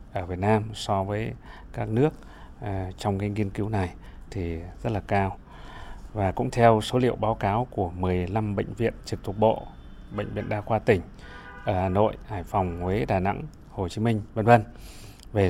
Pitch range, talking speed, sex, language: 95-110 Hz, 190 wpm, male, Vietnamese